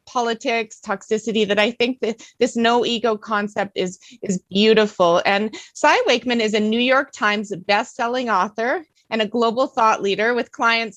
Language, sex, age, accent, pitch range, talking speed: English, female, 30-49, American, 195-245 Hz, 170 wpm